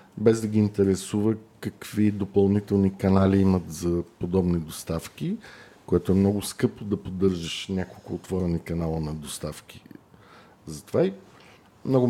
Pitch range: 95-120 Hz